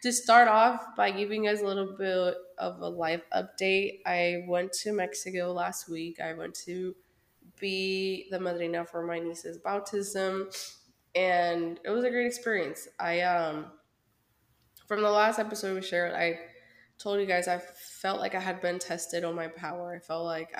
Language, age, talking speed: English, 20-39, 175 wpm